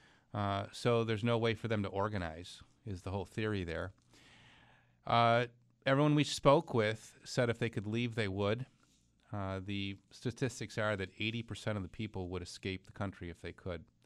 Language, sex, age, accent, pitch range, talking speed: English, male, 40-59, American, 95-115 Hz, 180 wpm